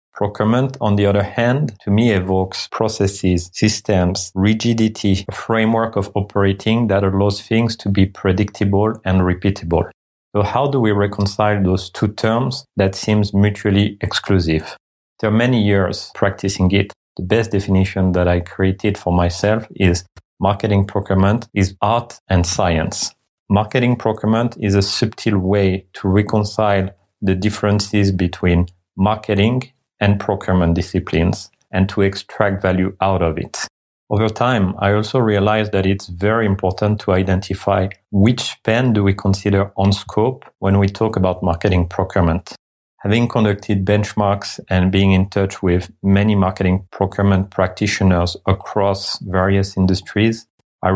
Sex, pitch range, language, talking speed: male, 95-105 Hz, English, 140 wpm